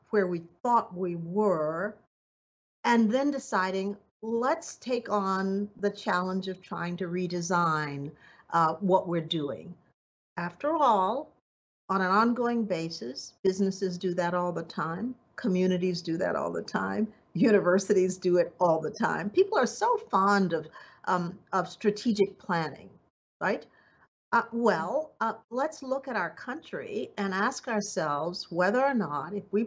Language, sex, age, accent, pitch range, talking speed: English, female, 50-69, American, 180-225 Hz, 145 wpm